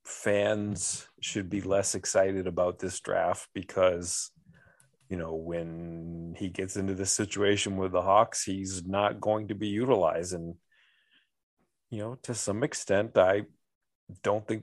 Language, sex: English, male